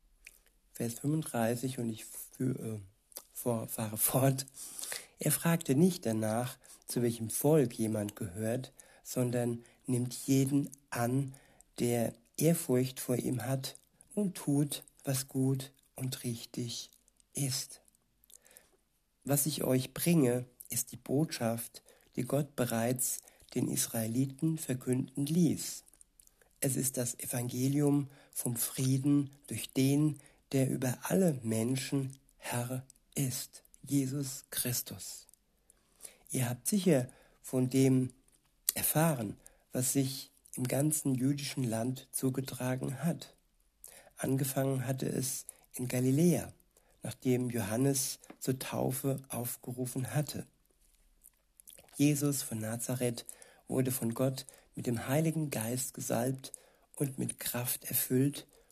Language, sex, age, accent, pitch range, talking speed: German, male, 60-79, German, 120-140 Hz, 105 wpm